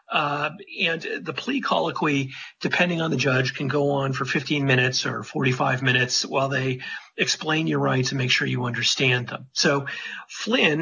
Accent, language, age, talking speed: American, English, 40-59, 170 wpm